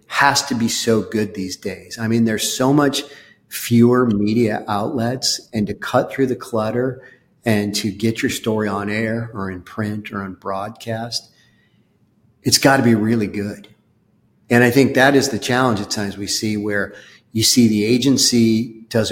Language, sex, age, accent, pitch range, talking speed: English, male, 40-59, American, 105-120 Hz, 180 wpm